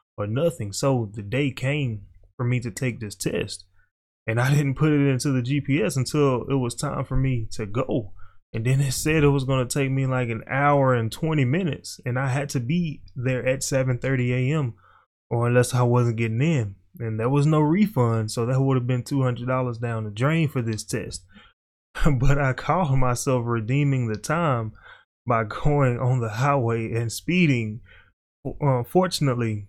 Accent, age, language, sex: American, 20-39, English, male